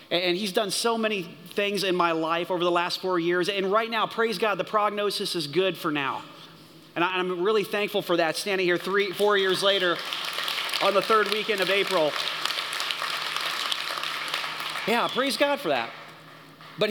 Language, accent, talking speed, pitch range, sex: English, American, 175 wpm, 170-230 Hz, male